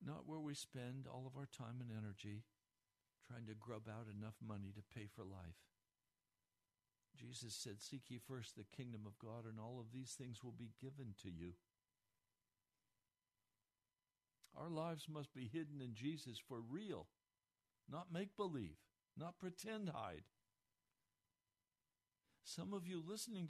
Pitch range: 110-165 Hz